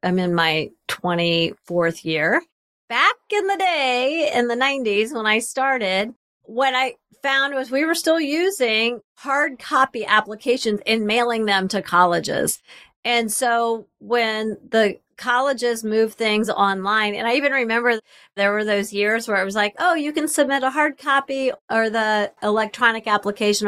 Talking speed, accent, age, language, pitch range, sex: 155 wpm, American, 40-59, English, 195-245 Hz, female